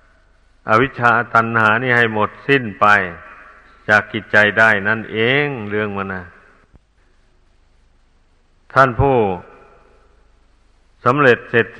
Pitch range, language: 95-120 Hz, Thai